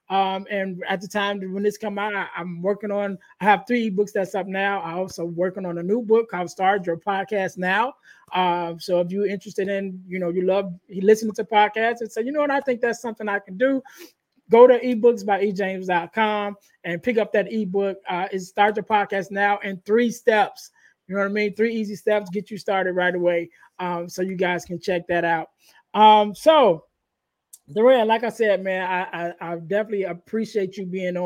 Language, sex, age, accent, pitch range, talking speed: English, male, 20-39, American, 180-210 Hz, 215 wpm